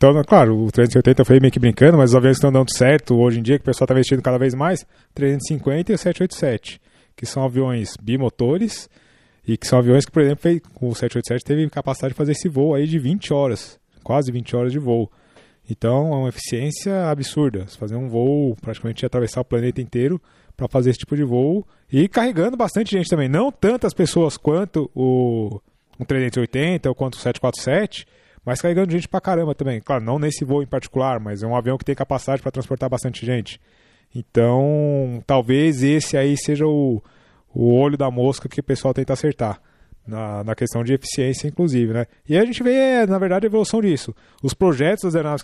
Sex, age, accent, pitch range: male, 20-39, Brazilian, 125-155 Hz